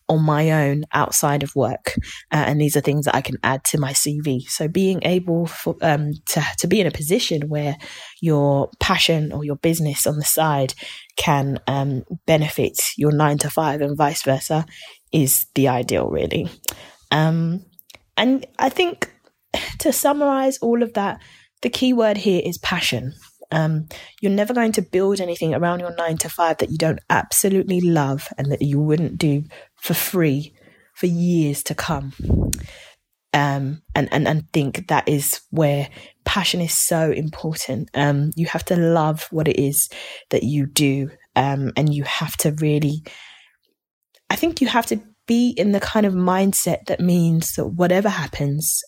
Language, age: English, 20-39